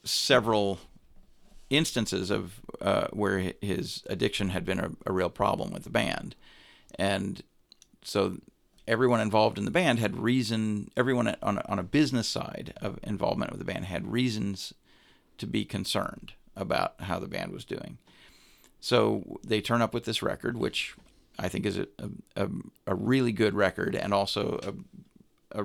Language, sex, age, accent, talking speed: English, male, 40-59, American, 160 wpm